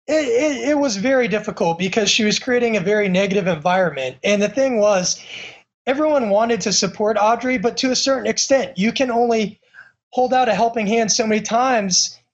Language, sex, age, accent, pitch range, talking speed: English, male, 20-39, American, 185-230 Hz, 185 wpm